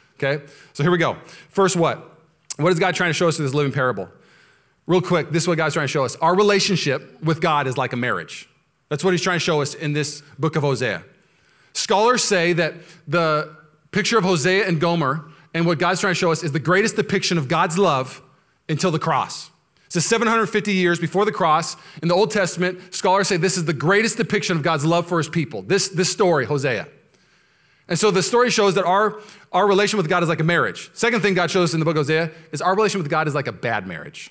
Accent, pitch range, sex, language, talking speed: American, 130-180 Hz, male, English, 240 wpm